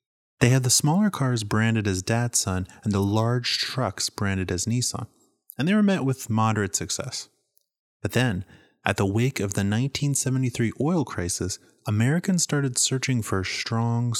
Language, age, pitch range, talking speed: English, 30-49, 100-125 Hz, 160 wpm